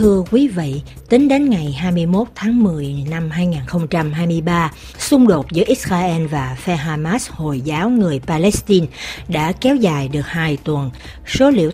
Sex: female